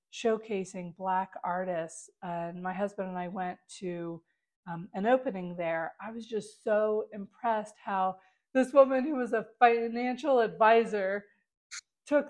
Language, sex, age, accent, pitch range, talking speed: English, female, 40-59, American, 185-225 Hz, 140 wpm